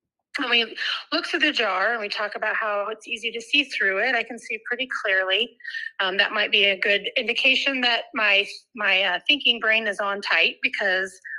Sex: female